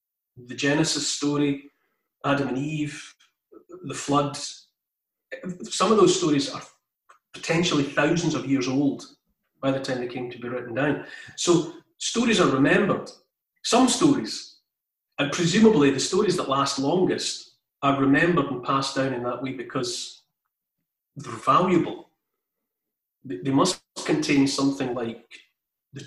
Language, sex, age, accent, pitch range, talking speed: English, male, 40-59, British, 135-175 Hz, 130 wpm